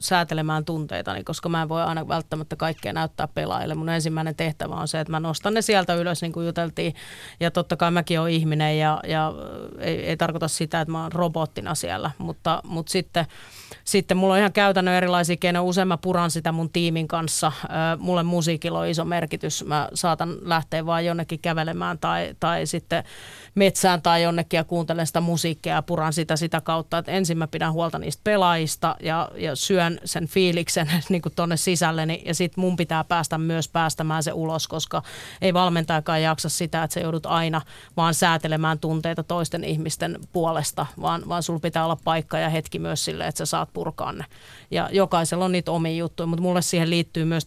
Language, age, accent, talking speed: Finnish, 30-49, native, 190 wpm